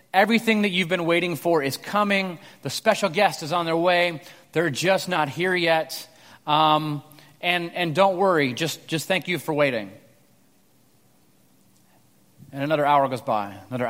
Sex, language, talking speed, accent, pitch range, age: male, English, 160 wpm, American, 125-170 Hz, 30-49